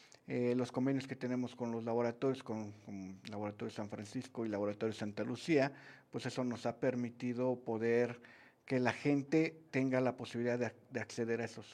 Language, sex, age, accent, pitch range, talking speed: Spanish, male, 50-69, Mexican, 110-130 Hz, 180 wpm